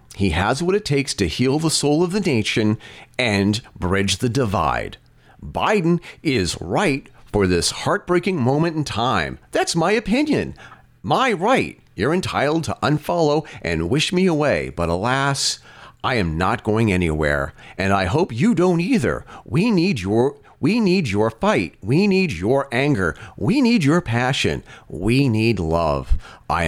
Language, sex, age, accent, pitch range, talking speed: English, male, 40-59, American, 100-150 Hz, 155 wpm